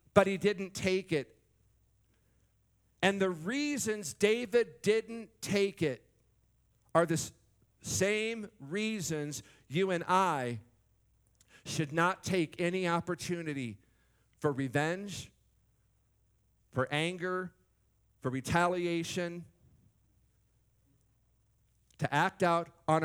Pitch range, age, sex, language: 120-175 Hz, 50-69, male, English